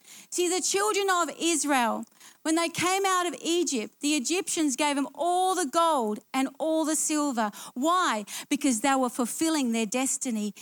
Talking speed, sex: 165 wpm, female